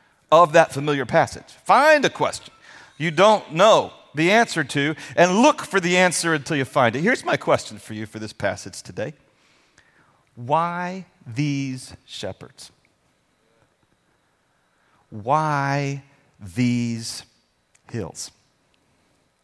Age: 40-59